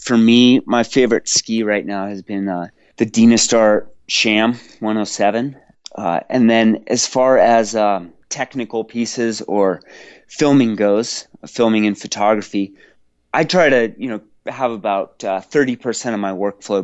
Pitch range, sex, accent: 95-115 Hz, male, American